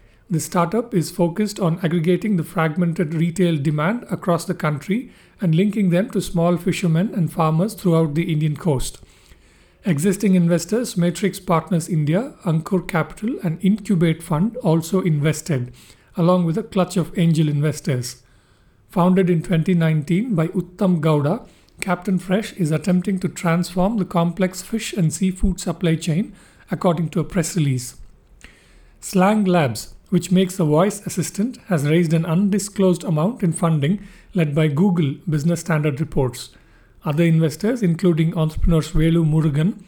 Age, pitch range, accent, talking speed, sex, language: 50-69, 160-185 Hz, Indian, 140 wpm, male, English